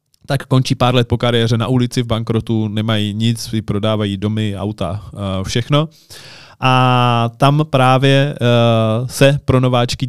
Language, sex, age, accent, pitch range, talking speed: Czech, male, 20-39, native, 120-145 Hz, 145 wpm